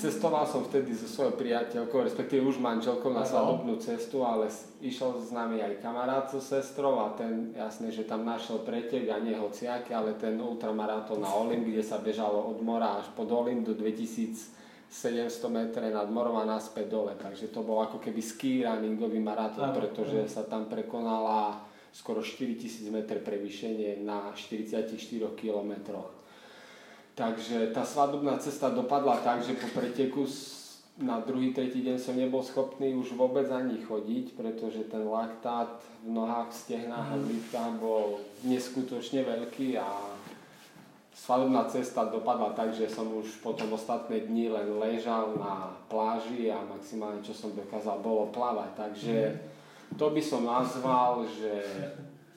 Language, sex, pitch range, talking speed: Slovak, male, 110-125 Hz, 140 wpm